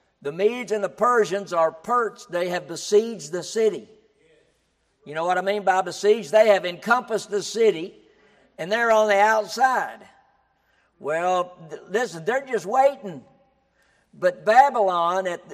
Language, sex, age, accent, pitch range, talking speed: English, male, 60-79, American, 185-225 Hz, 145 wpm